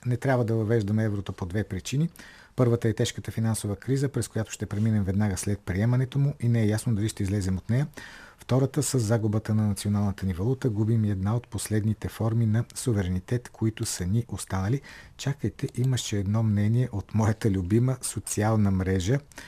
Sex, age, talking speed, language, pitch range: male, 50-69, 175 wpm, Bulgarian, 100-125 Hz